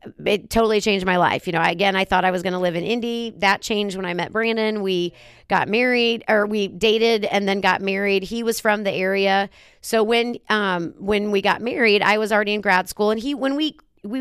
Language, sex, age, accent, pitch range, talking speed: English, female, 30-49, American, 195-220 Hz, 235 wpm